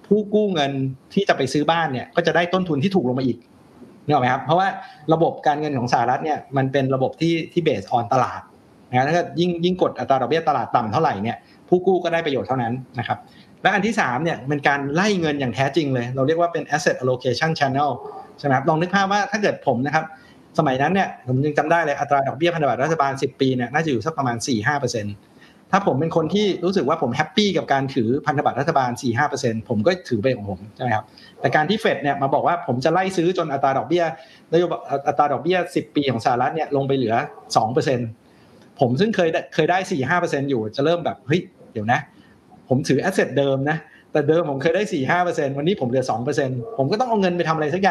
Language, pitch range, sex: Thai, 130-170 Hz, male